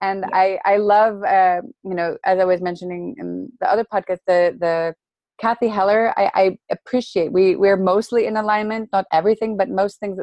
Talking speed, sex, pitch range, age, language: 190 wpm, female, 175-210 Hz, 30-49, English